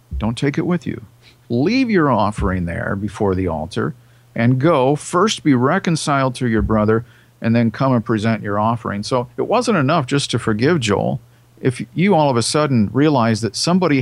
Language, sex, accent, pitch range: English, male, American, 110-140 Hz